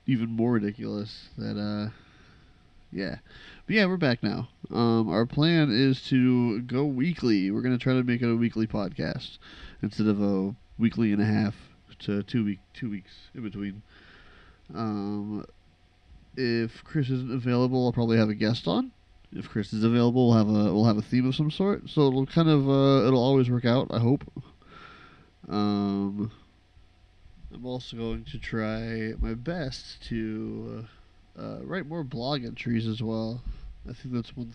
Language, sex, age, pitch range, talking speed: English, male, 20-39, 105-135 Hz, 170 wpm